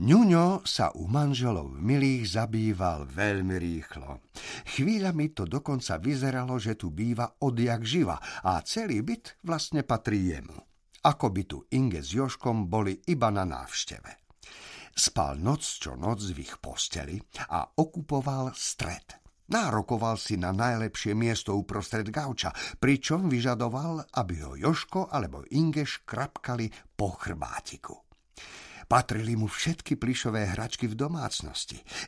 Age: 50-69